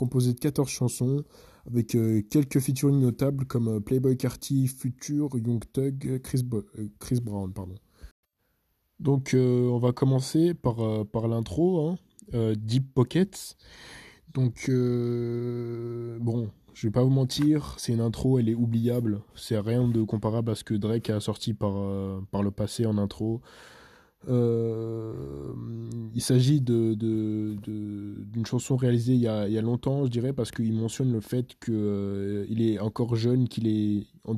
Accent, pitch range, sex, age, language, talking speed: French, 105-125 Hz, male, 20-39, French, 170 wpm